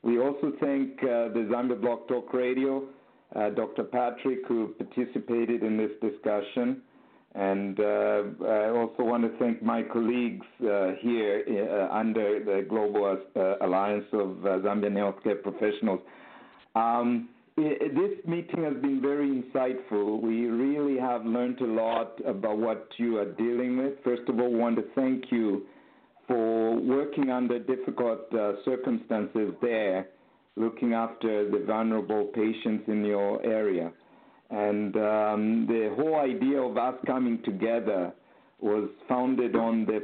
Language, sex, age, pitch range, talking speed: English, male, 50-69, 105-125 Hz, 140 wpm